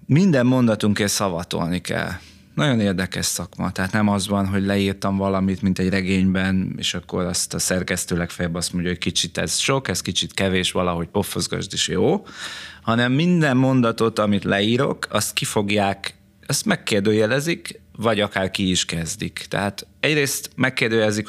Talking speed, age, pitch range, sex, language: 150 wpm, 30-49, 100-120 Hz, male, Hungarian